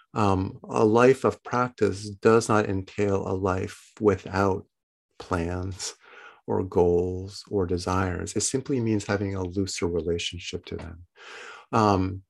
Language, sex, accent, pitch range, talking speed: English, male, American, 95-115 Hz, 125 wpm